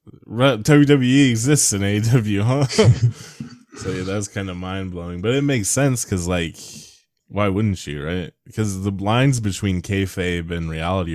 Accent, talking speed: American, 145 wpm